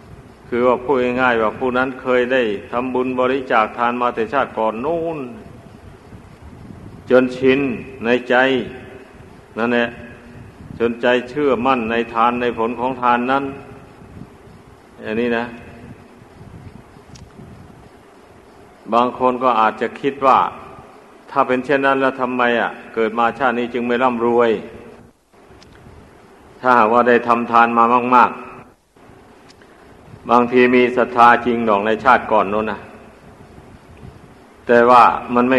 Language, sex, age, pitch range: Thai, male, 60-79, 115-125 Hz